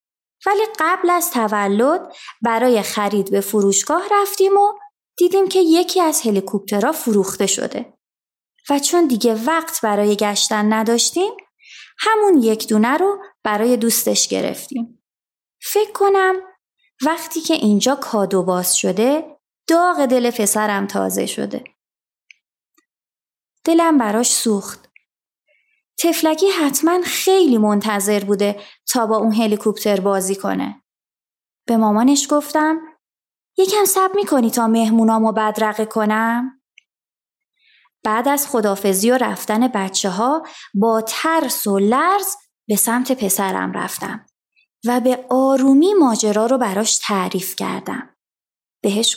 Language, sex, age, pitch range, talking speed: Persian, female, 30-49, 210-320 Hz, 115 wpm